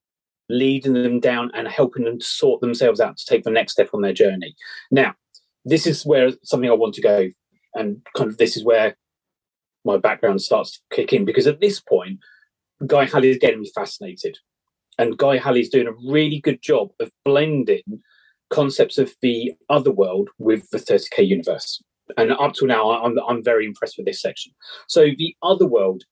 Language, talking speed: English, 195 wpm